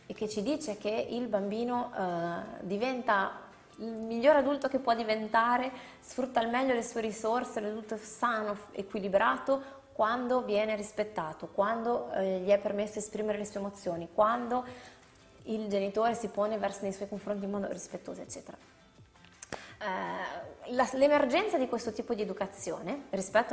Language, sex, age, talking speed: Italian, female, 20-39, 150 wpm